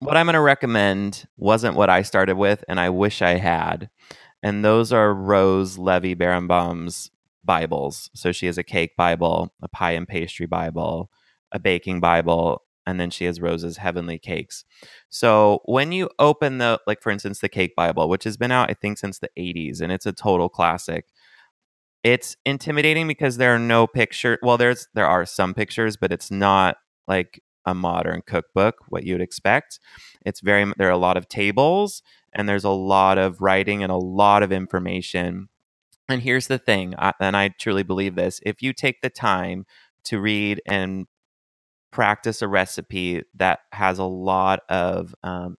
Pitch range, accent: 90-115 Hz, American